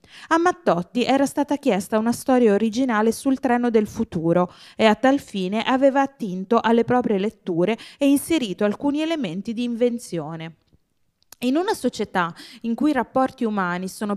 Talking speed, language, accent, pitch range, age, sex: 155 wpm, Italian, native, 190-260 Hz, 20-39, female